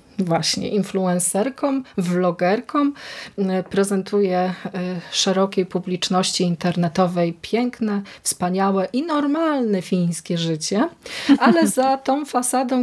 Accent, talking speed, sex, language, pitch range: native, 80 wpm, female, Polish, 185-225 Hz